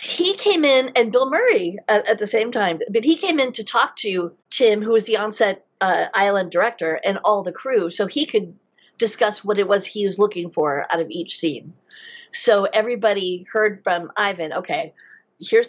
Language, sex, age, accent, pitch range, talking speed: English, female, 40-59, American, 180-240 Hz, 200 wpm